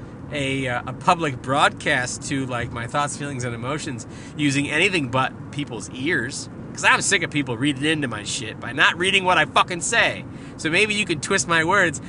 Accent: American